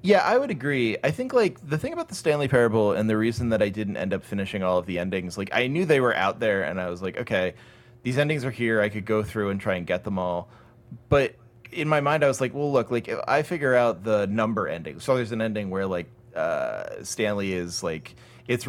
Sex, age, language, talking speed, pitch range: male, 30-49, English, 255 wpm, 95-120 Hz